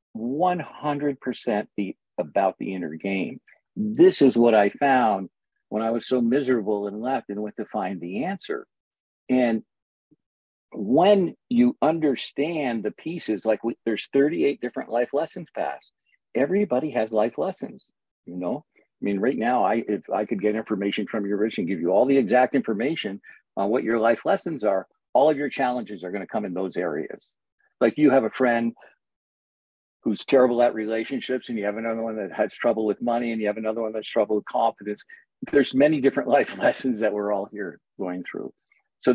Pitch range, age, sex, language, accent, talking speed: 105-135 Hz, 50-69, male, English, American, 180 wpm